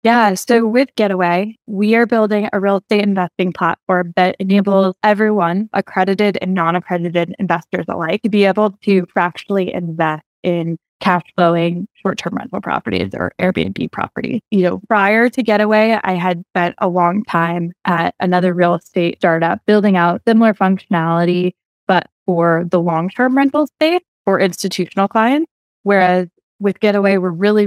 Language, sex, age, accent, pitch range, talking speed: English, female, 20-39, American, 175-205 Hz, 155 wpm